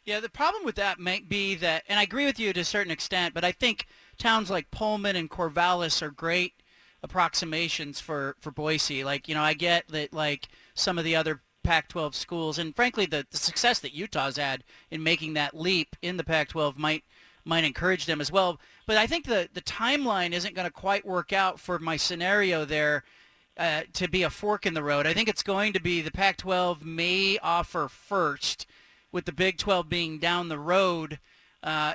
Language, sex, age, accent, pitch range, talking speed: English, male, 30-49, American, 160-205 Hz, 205 wpm